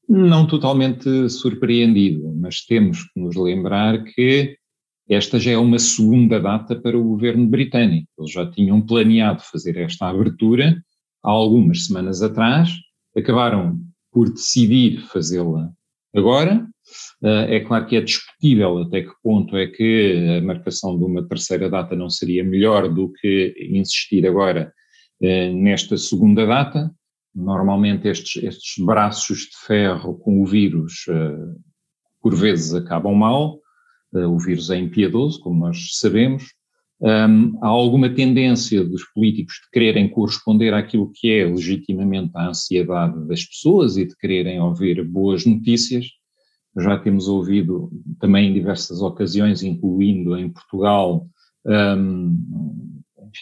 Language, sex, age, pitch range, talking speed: Portuguese, male, 40-59, 95-120 Hz, 130 wpm